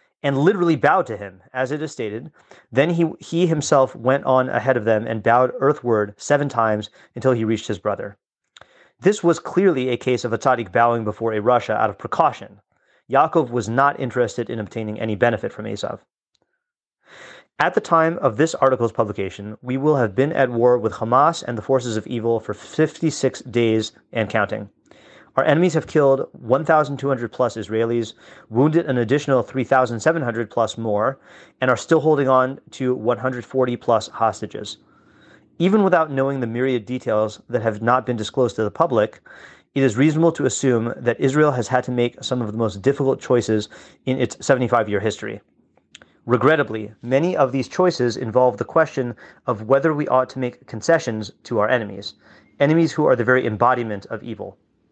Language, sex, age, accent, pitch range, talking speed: English, male, 30-49, American, 115-140 Hz, 175 wpm